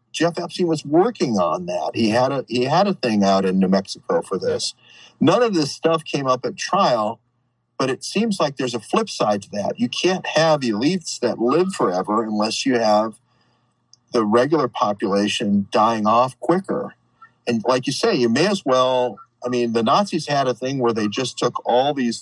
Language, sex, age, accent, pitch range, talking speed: English, male, 40-59, American, 120-165 Hz, 200 wpm